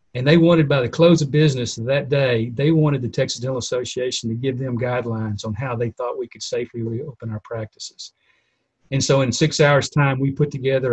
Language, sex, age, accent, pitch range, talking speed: English, male, 50-69, American, 120-140 Hz, 215 wpm